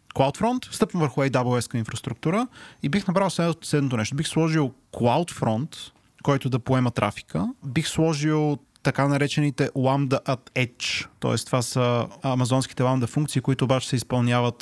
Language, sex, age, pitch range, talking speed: Bulgarian, male, 30-49, 125-155 Hz, 145 wpm